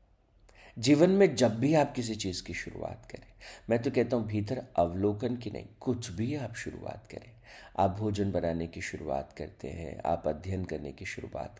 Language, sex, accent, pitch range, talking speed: Hindi, male, native, 95-125 Hz, 180 wpm